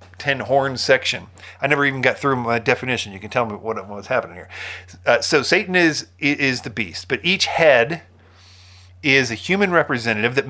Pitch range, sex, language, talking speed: 100-130 Hz, male, English, 190 wpm